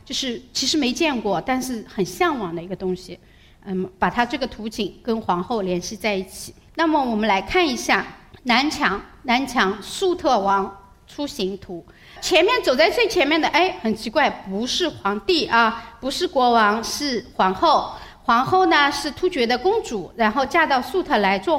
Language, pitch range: Chinese, 210-330 Hz